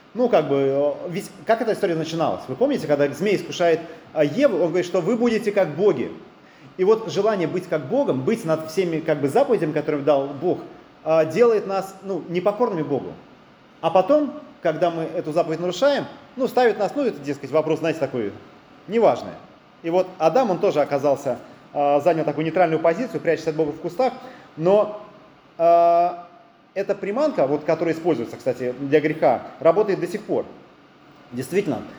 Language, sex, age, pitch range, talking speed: Russian, male, 30-49, 160-200 Hz, 165 wpm